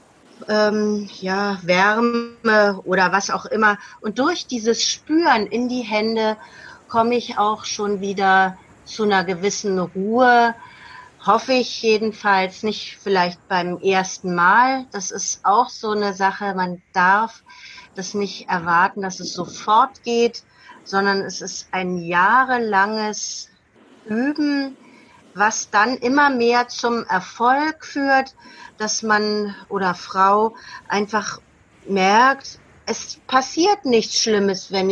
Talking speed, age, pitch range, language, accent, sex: 120 wpm, 40-59, 190-240 Hz, German, German, female